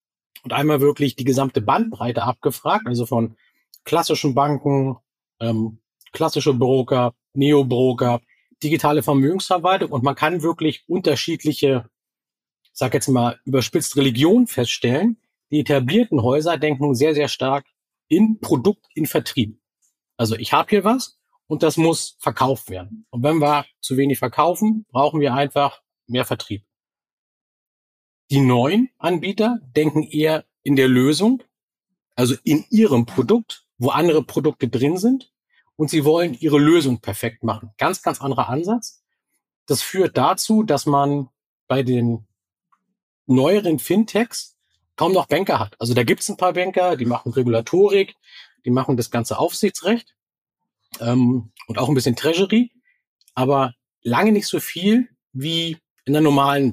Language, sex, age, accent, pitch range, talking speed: German, male, 40-59, German, 125-170 Hz, 140 wpm